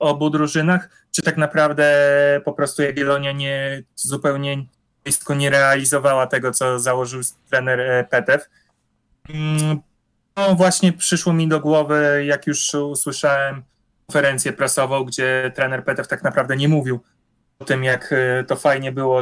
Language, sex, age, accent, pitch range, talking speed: Polish, male, 20-39, native, 135-155 Hz, 125 wpm